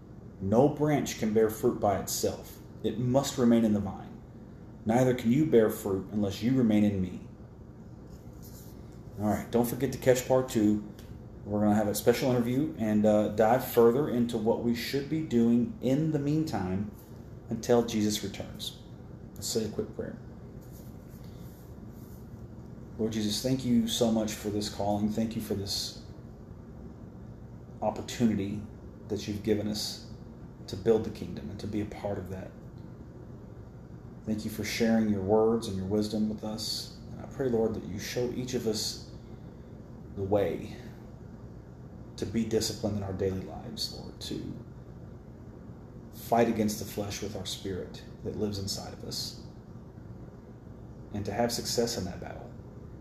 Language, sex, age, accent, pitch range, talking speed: English, male, 30-49, American, 105-120 Hz, 155 wpm